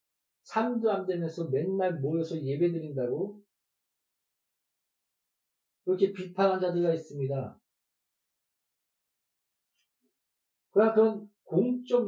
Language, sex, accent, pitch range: Korean, male, native, 165-205 Hz